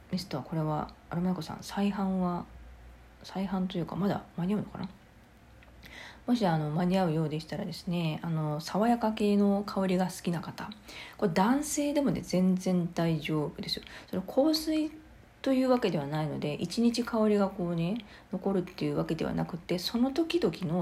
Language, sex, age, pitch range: Japanese, female, 40-59, 160-200 Hz